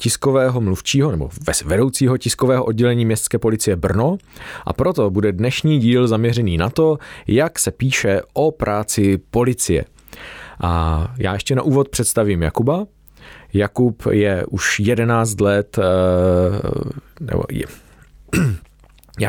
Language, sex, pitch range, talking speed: Czech, male, 95-120 Hz, 120 wpm